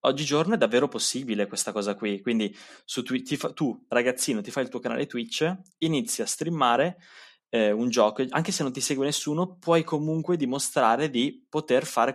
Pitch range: 110-140 Hz